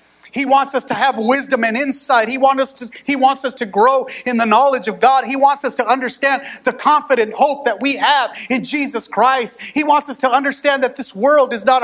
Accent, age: American, 40-59